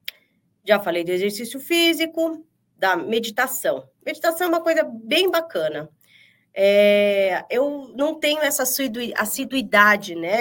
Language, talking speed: Portuguese, 115 wpm